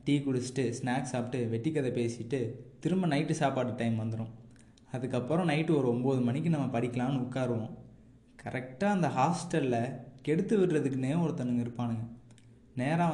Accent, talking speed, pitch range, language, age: native, 130 wpm, 120-155 Hz, Tamil, 20-39